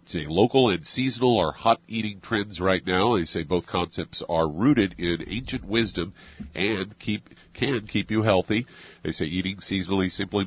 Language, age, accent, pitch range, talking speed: English, 50-69, American, 85-110 Hz, 170 wpm